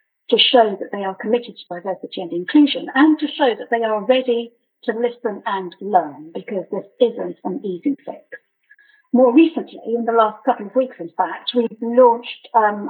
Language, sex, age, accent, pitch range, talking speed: English, female, 50-69, British, 195-260 Hz, 185 wpm